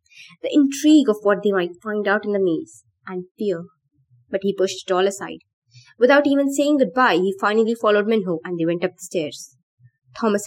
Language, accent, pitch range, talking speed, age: English, Indian, 180-235 Hz, 195 wpm, 20-39